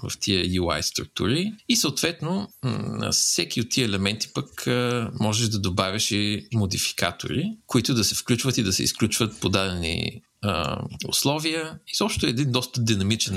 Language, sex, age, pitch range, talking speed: Bulgarian, male, 50-69, 100-145 Hz, 155 wpm